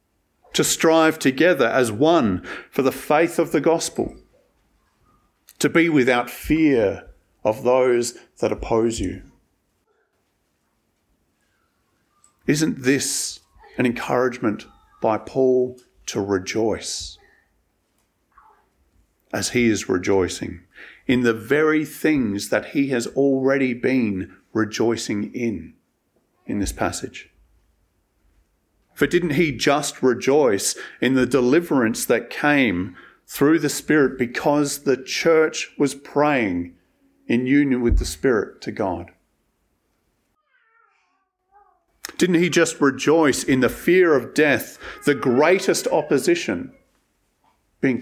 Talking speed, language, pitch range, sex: 105 wpm, English, 105-165 Hz, male